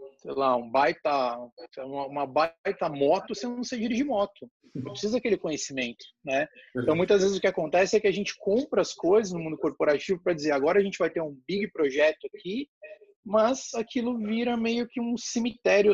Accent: Brazilian